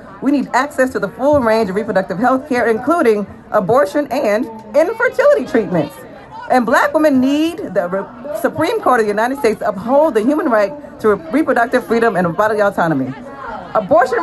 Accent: American